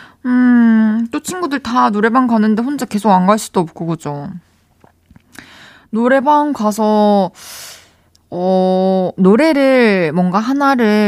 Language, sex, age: Korean, female, 20-39